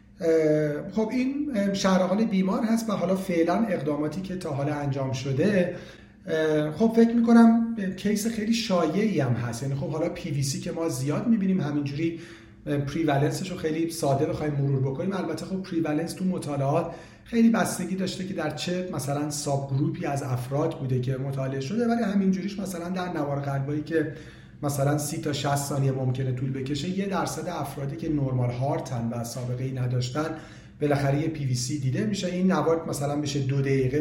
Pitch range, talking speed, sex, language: 140-180 Hz, 170 wpm, male, Persian